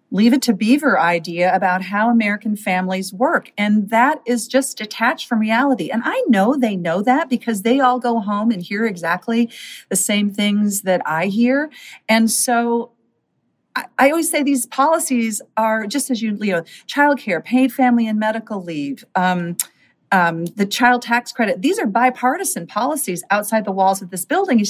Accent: American